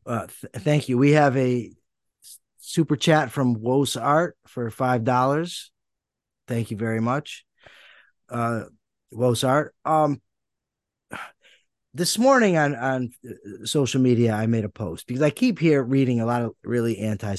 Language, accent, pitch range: English, American, 110-150 Hz